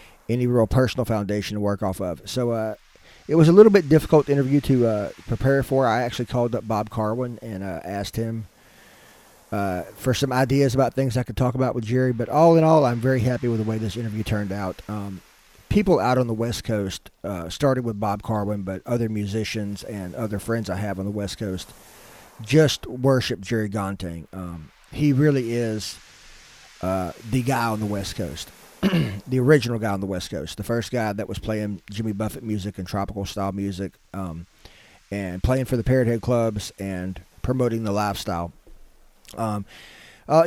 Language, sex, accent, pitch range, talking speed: English, male, American, 100-130 Hz, 195 wpm